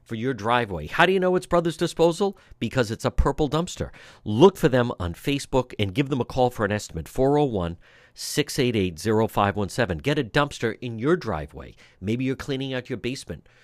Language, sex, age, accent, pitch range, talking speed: English, male, 50-69, American, 105-155 Hz, 175 wpm